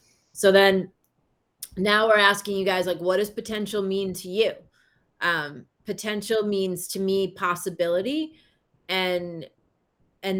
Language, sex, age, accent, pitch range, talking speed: English, female, 30-49, American, 190-245 Hz, 125 wpm